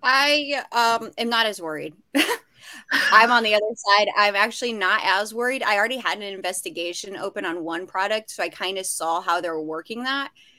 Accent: American